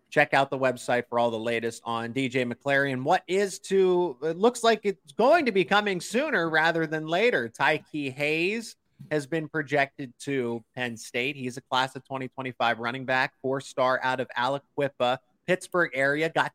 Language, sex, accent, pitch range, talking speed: English, male, American, 125-155 Hz, 180 wpm